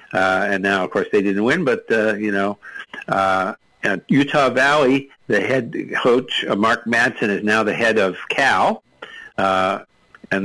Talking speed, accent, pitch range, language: 170 wpm, American, 100-120 Hz, English